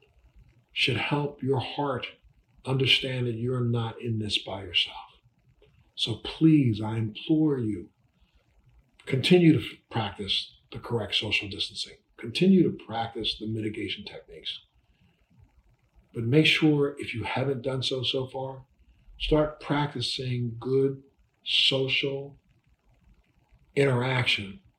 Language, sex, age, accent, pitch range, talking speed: English, male, 50-69, American, 115-140 Hz, 110 wpm